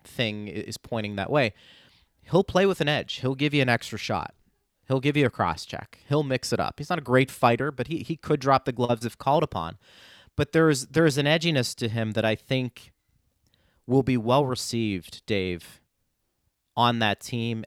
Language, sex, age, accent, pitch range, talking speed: English, male, 30-49, American, 105-140 Hz, 200 wpm